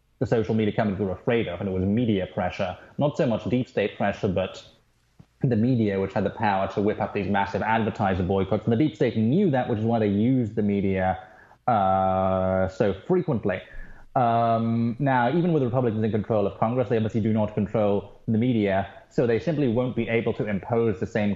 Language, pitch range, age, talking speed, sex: English, 95-115 Hz, 20-39, 210 wpm, male